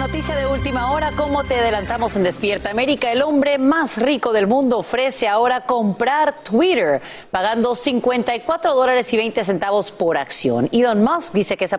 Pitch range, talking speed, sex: 180-245 Hz, 170 wpm, female